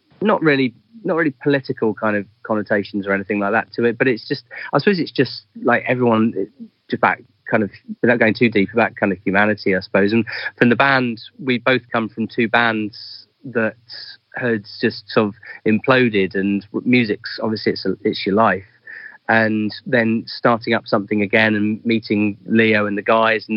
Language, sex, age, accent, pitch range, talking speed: English, male, 30-49, British, 100-115 Hz, 190 wpm